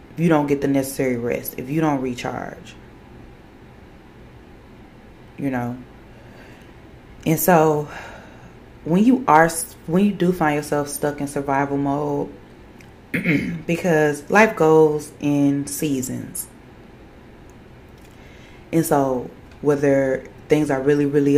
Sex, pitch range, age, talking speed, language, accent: female, 130-150 Hz, 20-39, 105 wpm, English, American